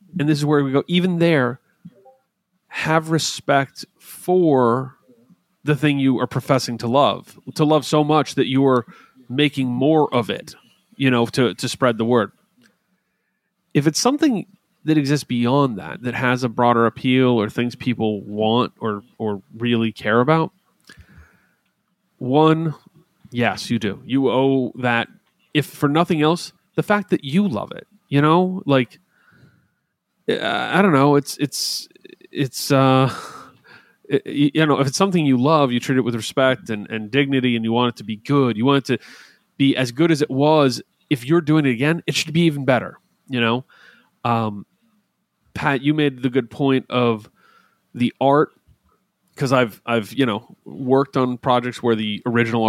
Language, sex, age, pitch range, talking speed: English, male, 30-49, 125-160 Hz, 170 wpm